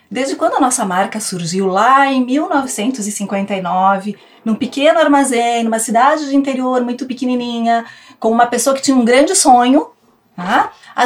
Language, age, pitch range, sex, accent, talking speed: Portuguese, 30-49, 190-250 Hz, female, Brazilian, 150 wpm